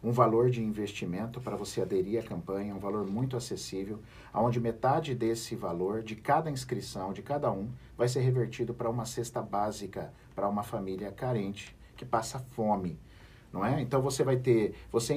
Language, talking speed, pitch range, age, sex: Portuguese, 175 wpm, 115-140 Hz, 50-69, male